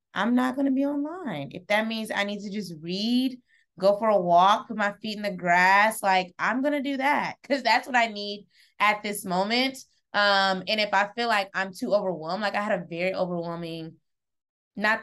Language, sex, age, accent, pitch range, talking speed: English, female, 20-39, American, 180-235 Hz, 210 wpm